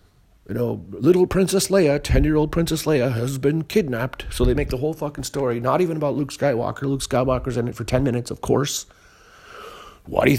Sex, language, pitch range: male, English, 90-135 Hz